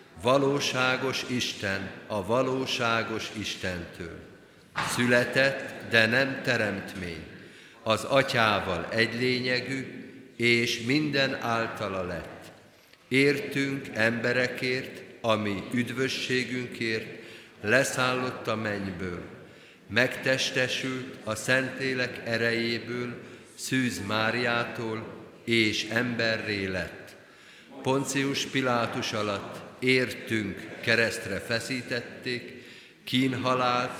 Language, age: Hungarian, 50-69